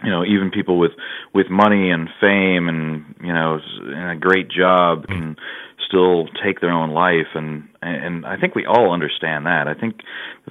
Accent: American